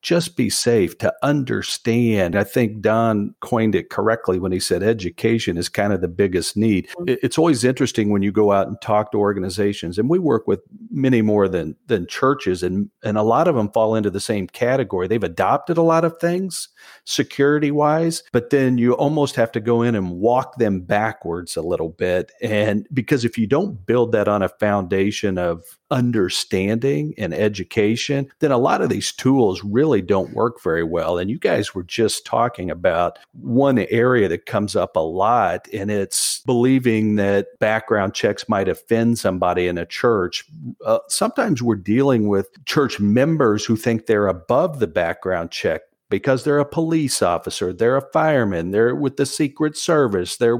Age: 50-69